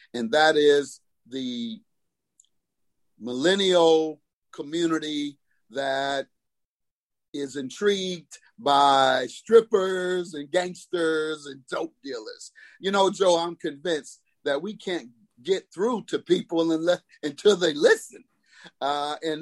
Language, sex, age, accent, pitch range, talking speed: English, male, 50-69, American, 140-185 Hz, 100 wpm